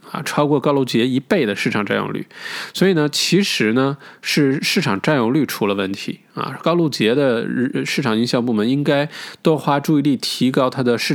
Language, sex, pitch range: Chinese, male, 115-145 Hz